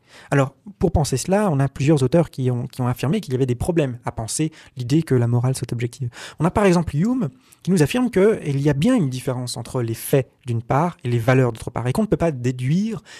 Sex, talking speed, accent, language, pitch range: male, 250 wpm, French, French, 130-175 Hz